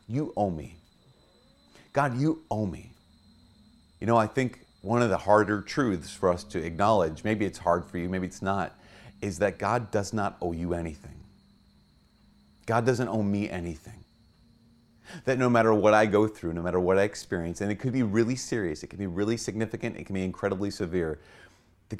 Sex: male